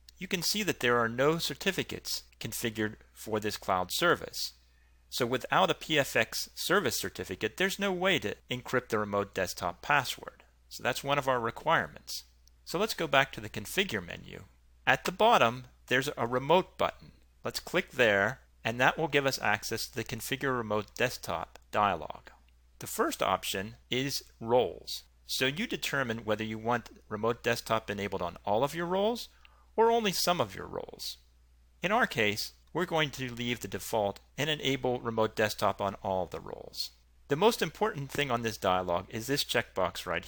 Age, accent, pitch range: 40-59, American, 95-140 Hz